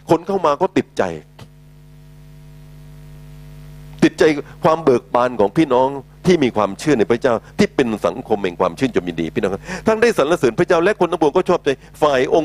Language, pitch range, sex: Thai, 125-150 Hz, male